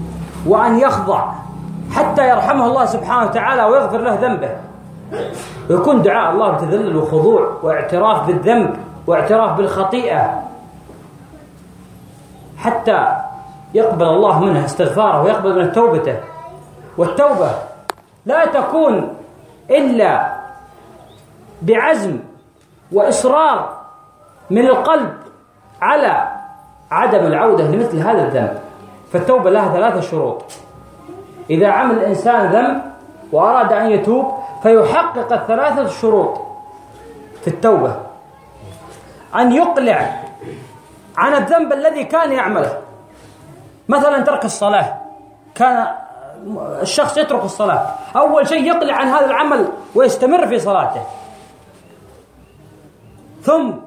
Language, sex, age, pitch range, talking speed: Swahili, female, 40-59, 220-365 Hz, 90 wpm